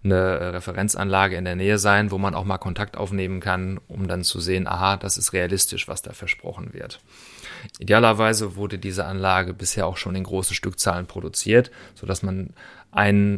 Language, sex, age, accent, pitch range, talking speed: German, male, 30-49, German, 95-110 Hz, 180 wpm